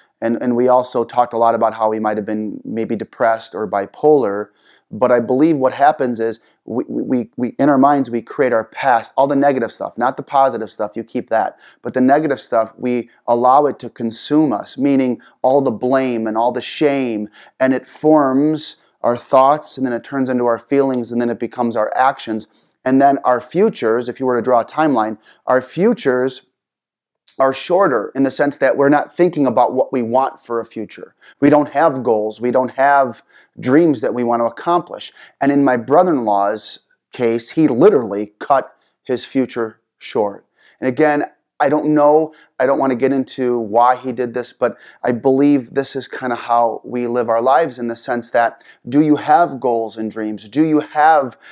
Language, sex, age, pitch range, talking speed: English, male, 30-49, 120-140 Hz, 200 wpm